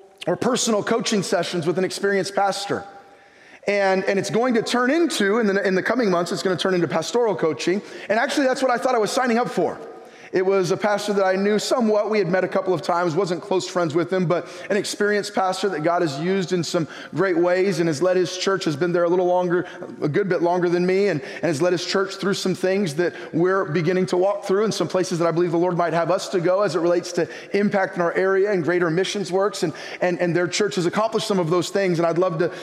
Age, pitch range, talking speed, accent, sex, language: 20-39, 180-215 Hz, 265 wpm, American, male, English